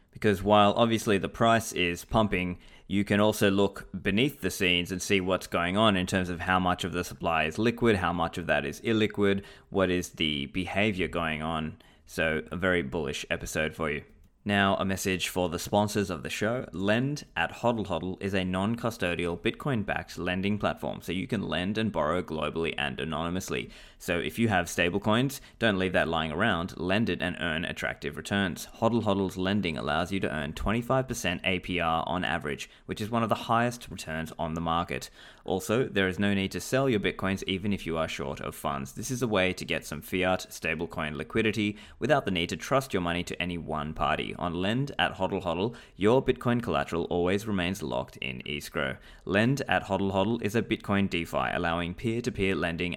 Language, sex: English, male